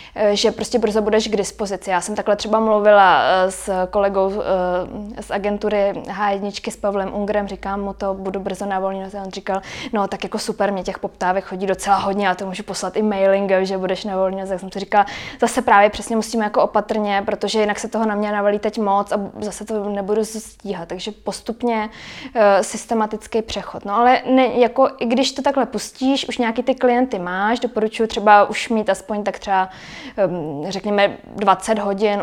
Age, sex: 20-39, female